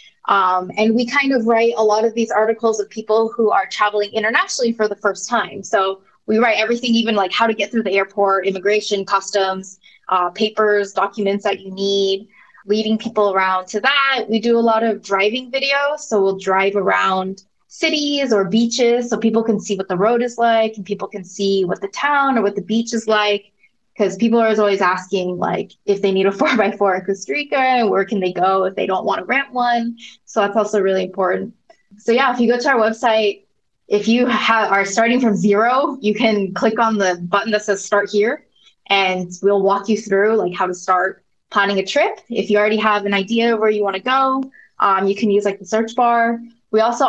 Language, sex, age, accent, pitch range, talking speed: English, female, 20-39, American, 200-235 Hz, 220 wpm